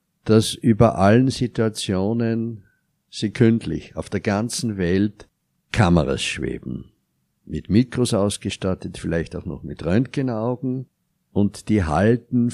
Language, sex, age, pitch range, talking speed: German, male, 60-79, 85-115 Hz, 105 wpm